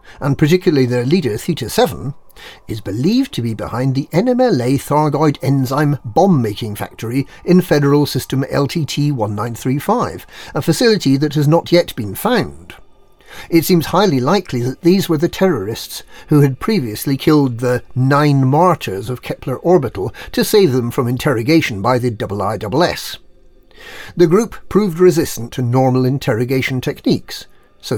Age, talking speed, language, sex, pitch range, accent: 50-69, 135 wpm, English, male, 125-175 Hz, British